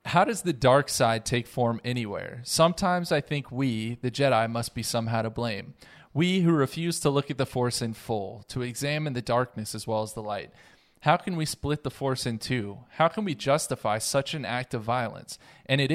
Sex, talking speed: male, 215 wpm